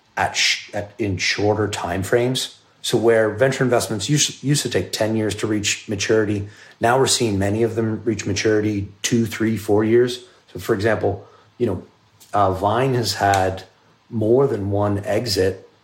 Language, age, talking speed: English, 30-49, 165 wpm